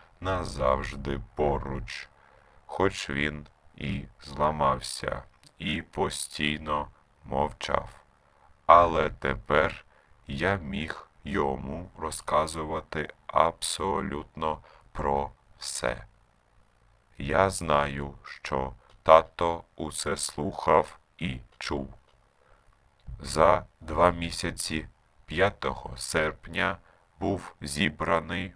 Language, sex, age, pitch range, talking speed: Ukrainian, male, 40-59, 75-85 Hz, 70 wpm